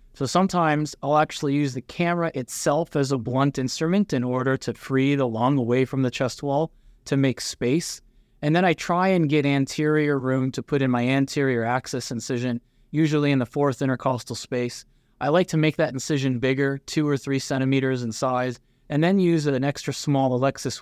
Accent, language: American, English